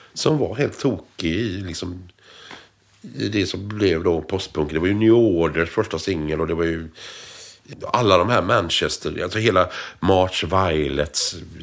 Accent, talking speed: Swedish, 155 wpm